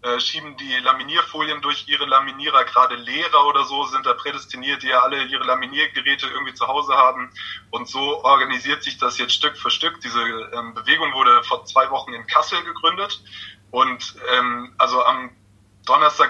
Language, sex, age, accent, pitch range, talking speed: German, male, 20-39, German, 120-140 Hz, 165 wpm